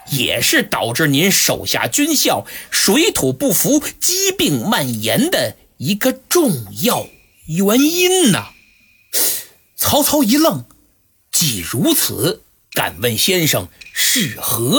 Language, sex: Chinese, male